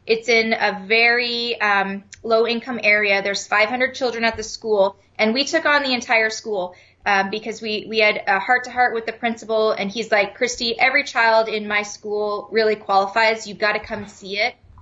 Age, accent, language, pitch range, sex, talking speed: 20-39, American, English, 205-240 Hz, female, 205 wpm